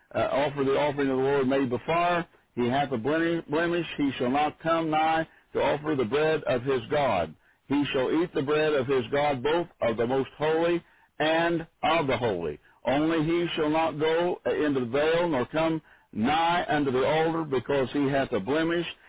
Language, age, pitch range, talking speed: English, 60-79, 130-160 Hz, 190 wpm